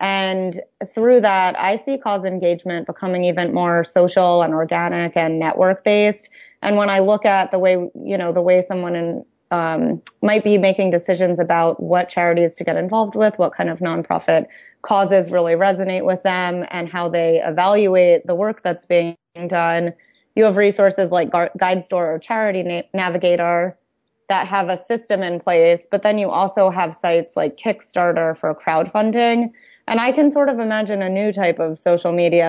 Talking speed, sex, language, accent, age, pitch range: 175 wpm, female, English, American, 20-39, 175-200 Hz